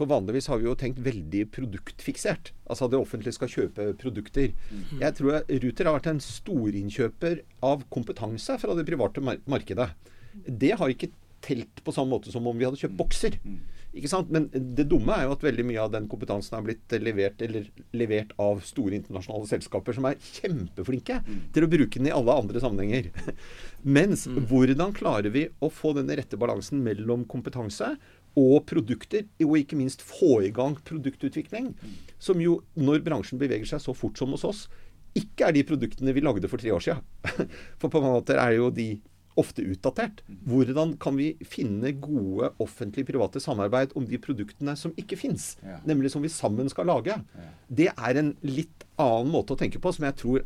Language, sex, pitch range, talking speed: English, male, 110-145 Hz, 180 wpm